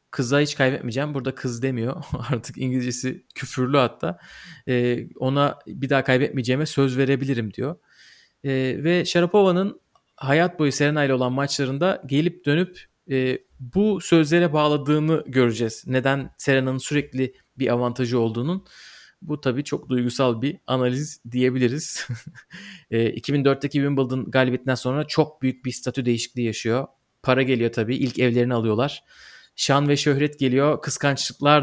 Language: Turkish